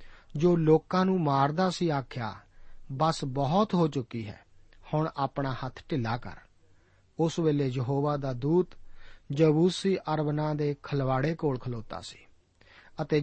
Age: 50-69